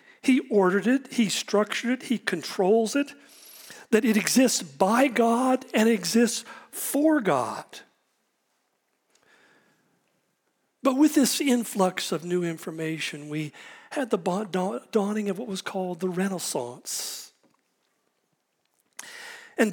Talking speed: 110 wpm